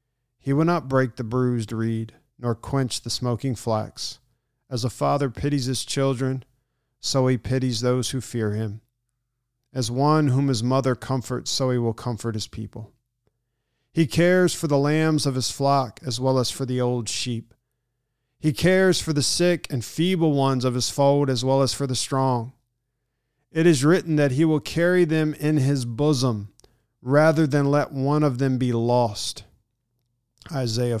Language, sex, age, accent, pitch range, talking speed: English, male, 40-59, American, 120-140 Hz, 170 wpm